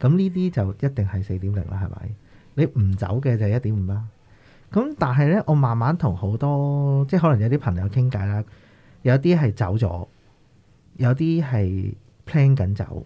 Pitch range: 100-140 Hz